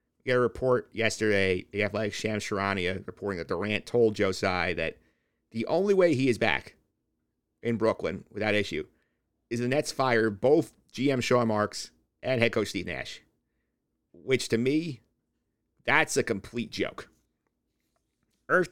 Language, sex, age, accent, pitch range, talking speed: English, male, 50-69, American, 105-130 Hz, 145 wpm